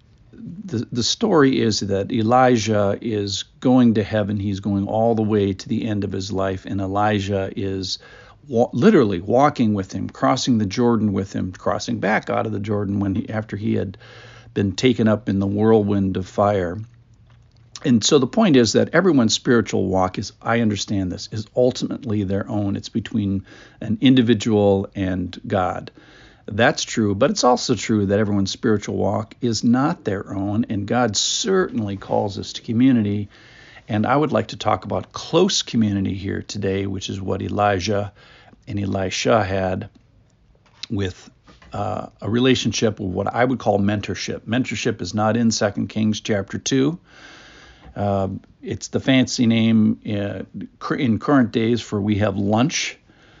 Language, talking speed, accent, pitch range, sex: English, 165 wpm, American, 100-120 Hz, male